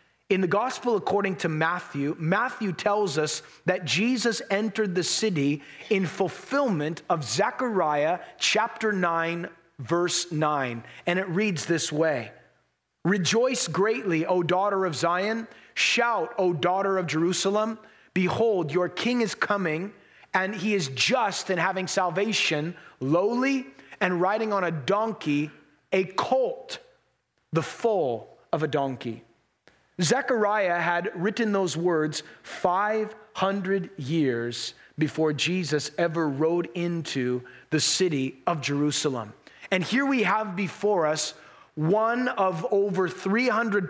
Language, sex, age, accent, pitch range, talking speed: English, male, 30-49, American, 160-210 Hz, 120 wpm